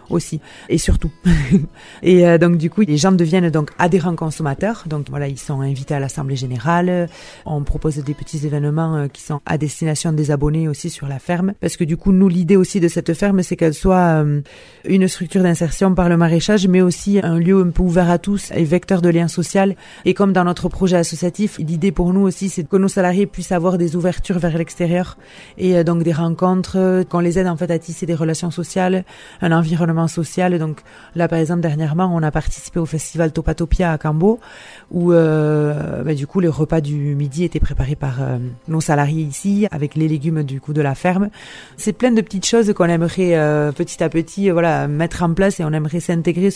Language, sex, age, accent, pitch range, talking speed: French, female, 30-49, French, 155-185 Hz, 215 wpm